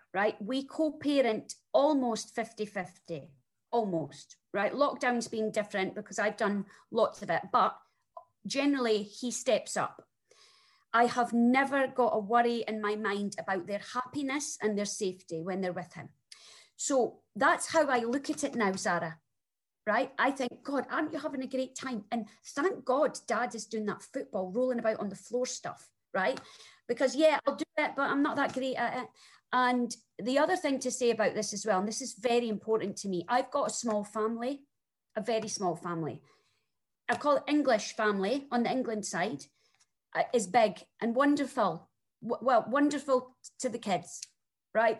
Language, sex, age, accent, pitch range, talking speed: English, female, 30-49, British, 210-265 Hz, 175 wpm